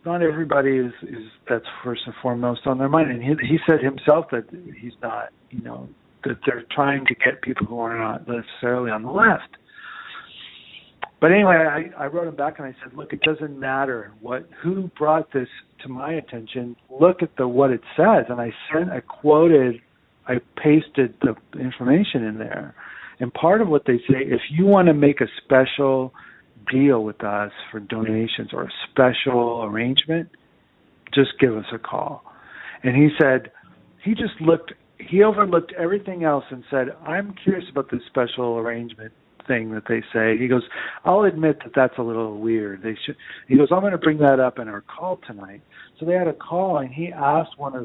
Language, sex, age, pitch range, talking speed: English, male, 50-69, 120-160 Hz, 195 wpm